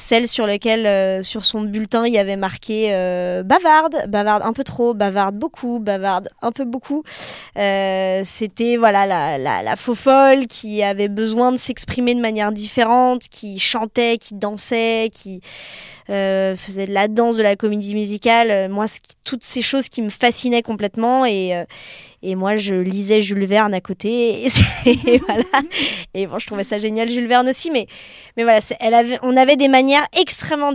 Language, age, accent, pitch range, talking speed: French, 20-39, French, 195-240 Hz, 180 wpm